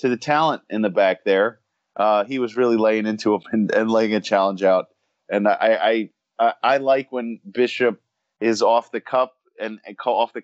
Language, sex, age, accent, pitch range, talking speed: English, male, 30-49, American, 105-125 Hz, 205 wpm